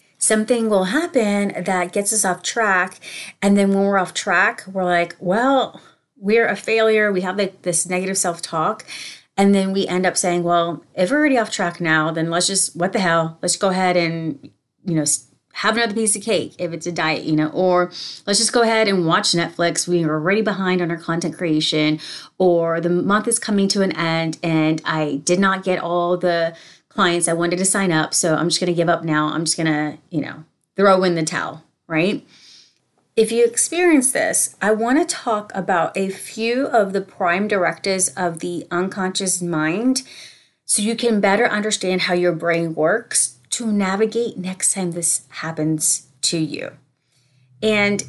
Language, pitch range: English, 165-205 Hz